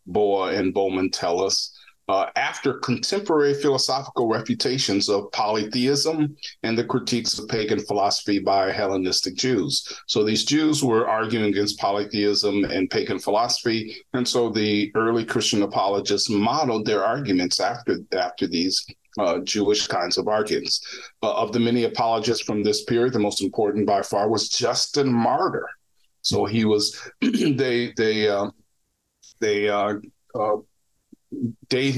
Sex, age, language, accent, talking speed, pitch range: male, 40-59, English, American, 140 wpm, 100-130 Hz